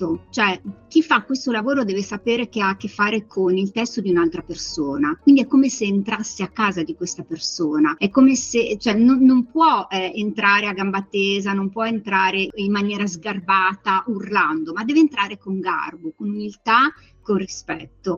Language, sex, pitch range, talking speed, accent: Italian, female, 195-265 Hz, 185 wpm, native